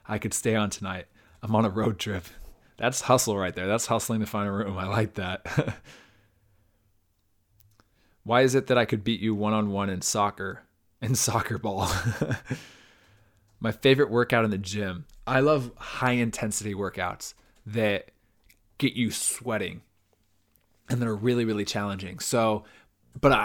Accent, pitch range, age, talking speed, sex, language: American, 100-115 Hz, 20-39, 155 wpm, male, English